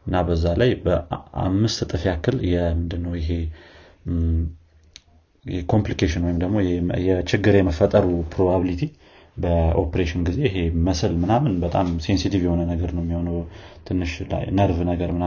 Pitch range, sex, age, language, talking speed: 85-95 Hz, male, 30-49, Amharic, 95 wpm